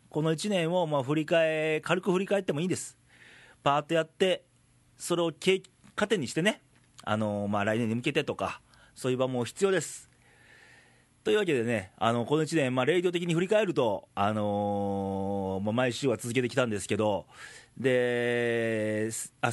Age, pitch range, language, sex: 40-59, 100-155 Hz, Japanese, male